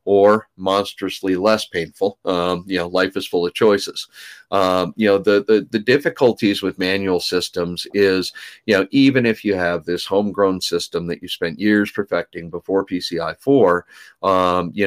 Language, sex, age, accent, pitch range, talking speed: English, male, 40-59, American, 90-110 Hz, 165 wpm